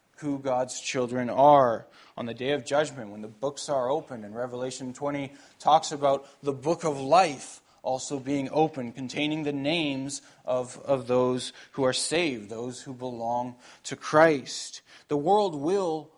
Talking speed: 160 wpm